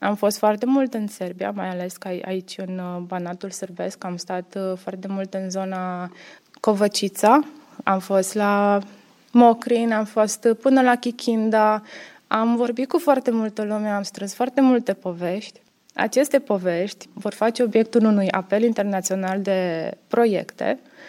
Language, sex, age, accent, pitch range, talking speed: Romanian, female, 20-39, native, 195-245 Hz, 140 wpm